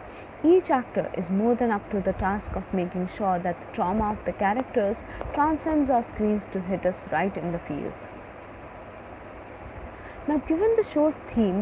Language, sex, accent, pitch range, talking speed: English, female, Indian, 185-260 Hz, 170 wpm